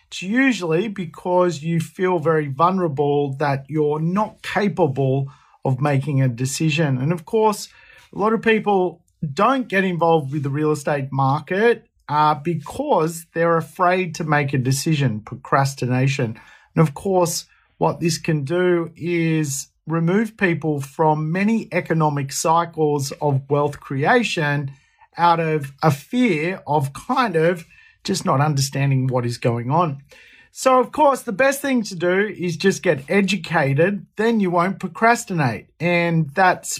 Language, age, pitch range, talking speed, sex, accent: English, 40-59, 145-190 Hz, 145 wpm, male, Australian